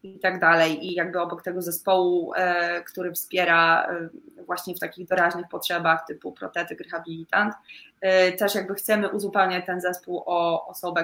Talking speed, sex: 140 wpm, female